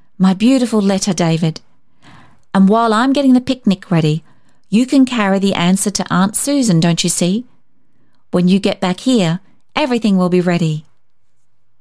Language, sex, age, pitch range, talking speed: English, female, 40-59, 185-245 Hz, 160 wpm